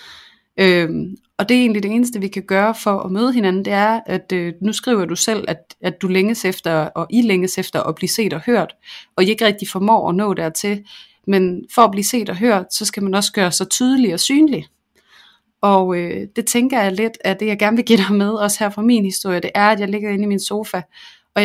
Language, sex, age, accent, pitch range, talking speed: Danish, female, 30-49, native, 180-210 Hz, 250 wpm